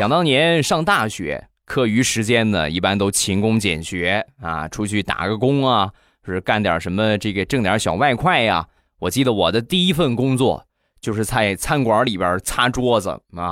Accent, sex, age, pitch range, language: native, male, 20-39, 100-140 Hz, Chinese